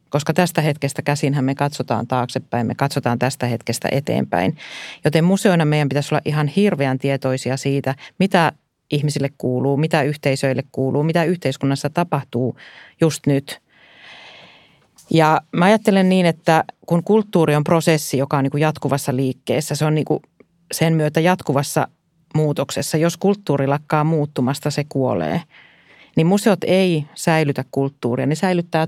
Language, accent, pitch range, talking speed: Finnish, native, 135-165 Hz, 135 wpm